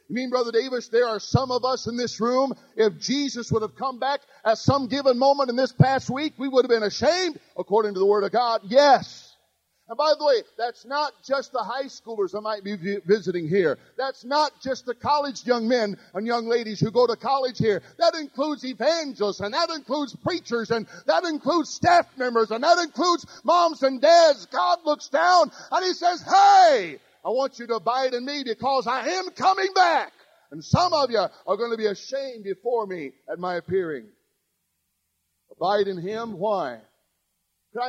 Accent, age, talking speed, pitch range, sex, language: American, 40-59, 200 wpm, 195-275 Hz, male, English